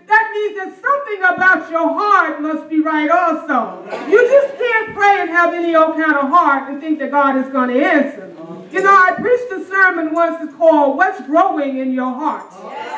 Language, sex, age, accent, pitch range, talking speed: English, female, 30-49, American, 295-385 Hz, 200 wpm